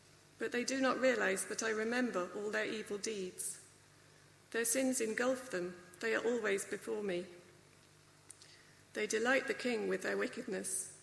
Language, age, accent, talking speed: English, 40-59, British, 150 wpm